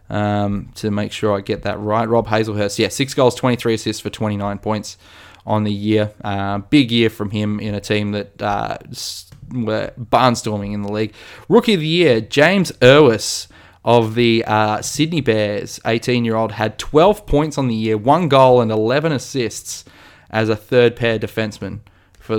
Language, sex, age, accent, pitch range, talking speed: English, male, 20-39, Australian, 105-125 Hz, 170 wpm